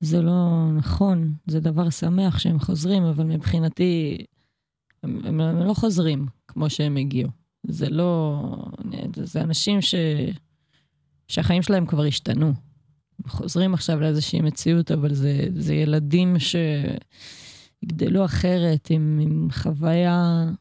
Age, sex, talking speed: 20-39, female, 120 wpm